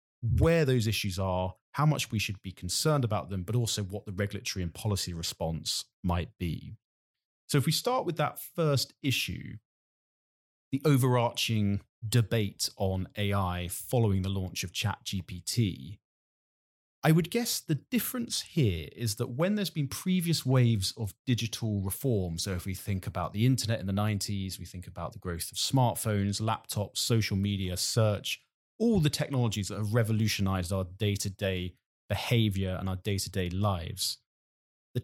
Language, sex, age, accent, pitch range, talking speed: English, male, 30-49, British, 95-130 Hz, 155 wpm